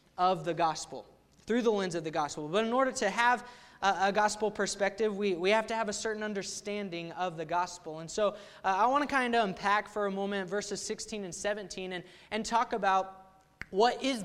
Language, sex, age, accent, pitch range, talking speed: English, male, 20-39, American, 180-220 Hz, 215 wpm